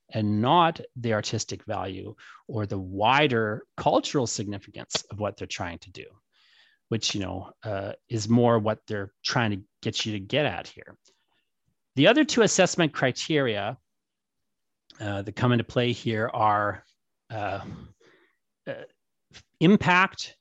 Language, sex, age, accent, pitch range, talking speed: English, male, 30-49, American, 100-125 Hz, 140 wpm